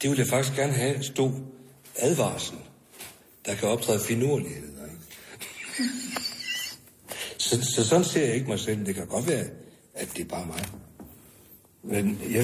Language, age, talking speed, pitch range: Danish, 60-79, 150 wpm, 105-145 Hz